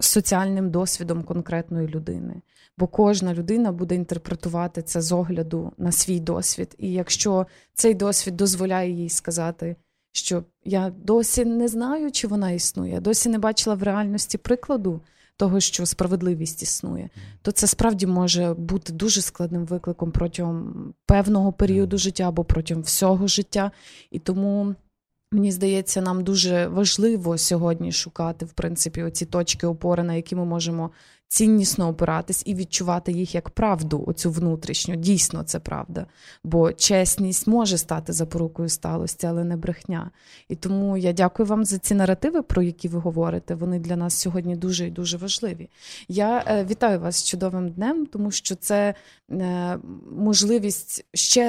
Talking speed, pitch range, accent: 145 wpm, 170-205 Hz, native